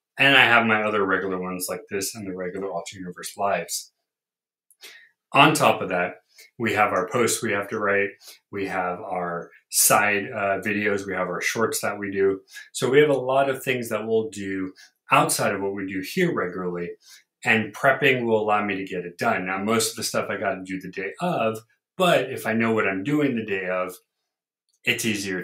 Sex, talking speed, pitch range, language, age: male, 210 wpm, 95-130 Hz, English, 30-49